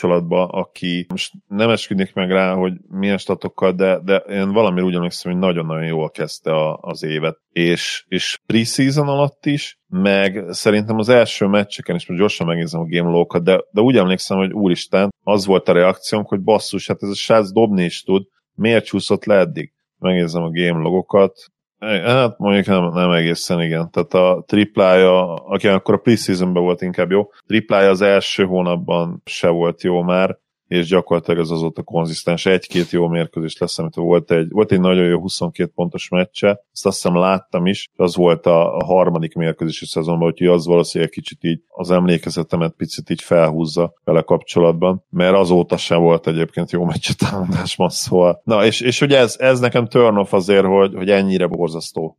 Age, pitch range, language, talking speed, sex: 30-49, 85-100 Hz, Hungarian, 175 wpm, male